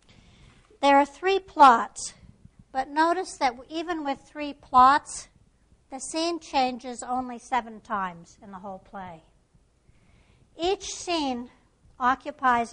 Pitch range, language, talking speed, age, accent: 215-285 Hz, English, 115 wpm, 60-79, American